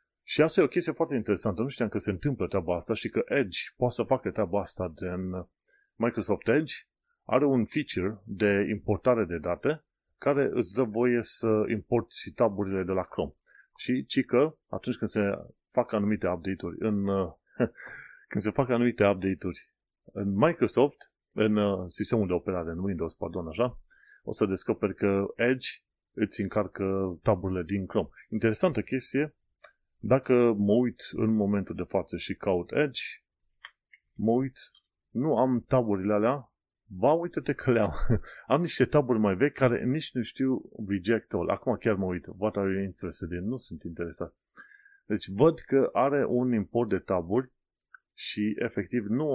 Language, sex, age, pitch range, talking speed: Romanian, male, 30-49, 95-125 Hz, 160 wpm